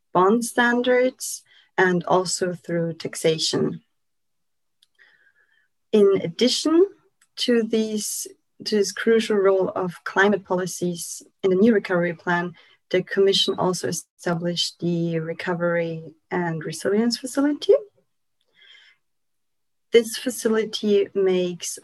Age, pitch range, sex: 30-49, 170-200 Hz, female